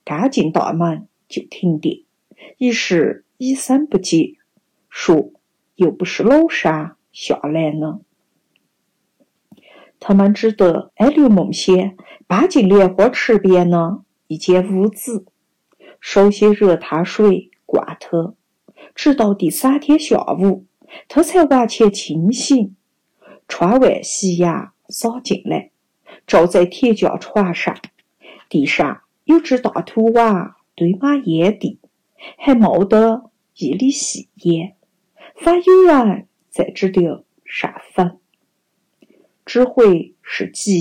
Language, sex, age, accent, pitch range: Chinese, female, 50-69, native, 180-250 Hz